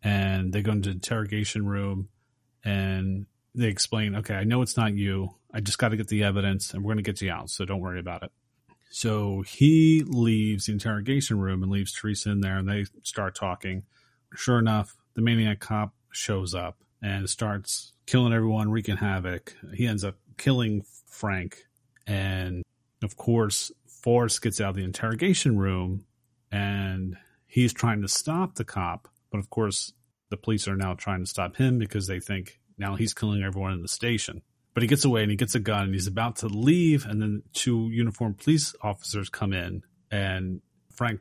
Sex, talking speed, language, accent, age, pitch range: male, 190 wpm, English, American, 30-49, 100-120 Hz